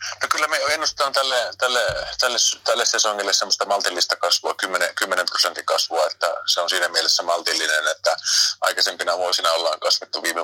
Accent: native